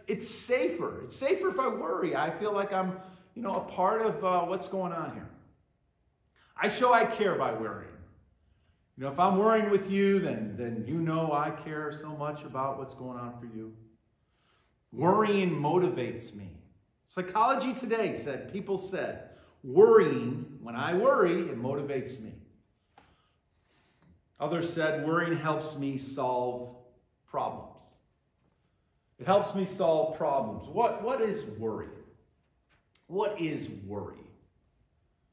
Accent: American